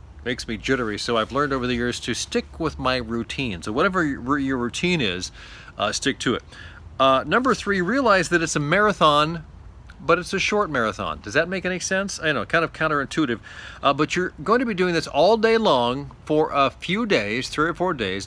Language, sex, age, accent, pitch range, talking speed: English, male, 40-59, American, 120-165 Hz, 215 wpm